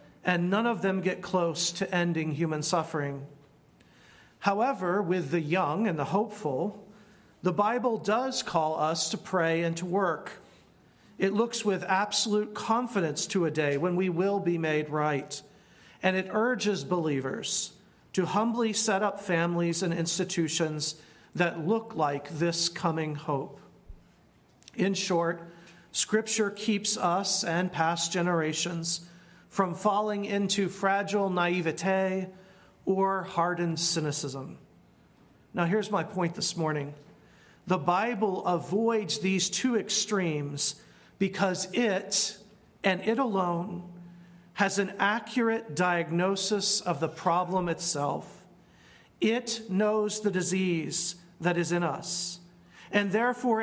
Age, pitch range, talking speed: 40-59, 170-205 Hz, 120 wpm